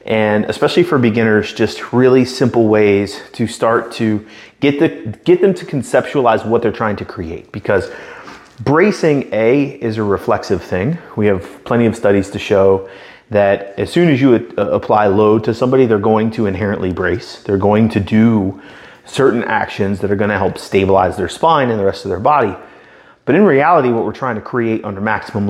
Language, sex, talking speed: English, male, 185 wpm